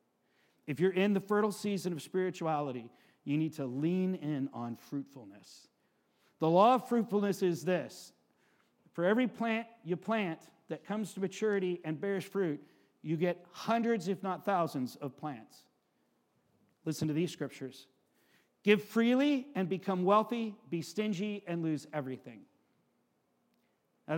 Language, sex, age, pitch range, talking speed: English, male, 50-69, 160-210 Hz, 140 wpm